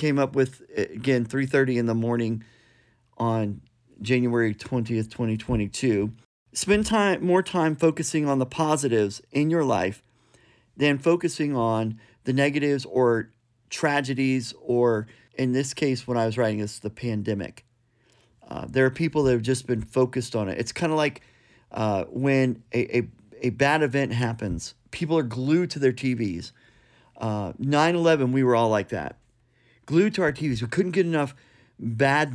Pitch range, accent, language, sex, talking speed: 115-140 Hz, American, English, male, 160 wpm